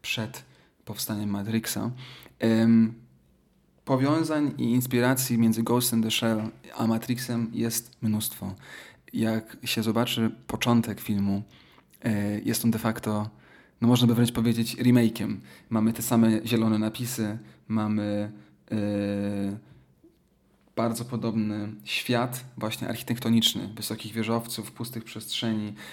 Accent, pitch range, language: native, 105-120 Hz, Polish